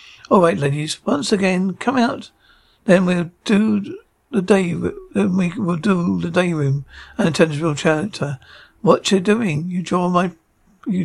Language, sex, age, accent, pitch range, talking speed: English, male, 60-79, British, 165-195 Hz, 165 wpm